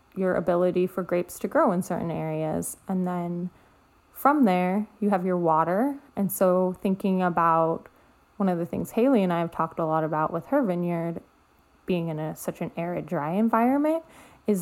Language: English